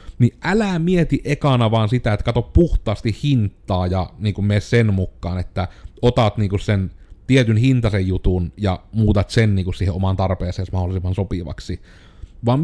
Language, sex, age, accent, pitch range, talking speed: Finnish, male, 30-49, native, 95-125 Hz, 160 wpm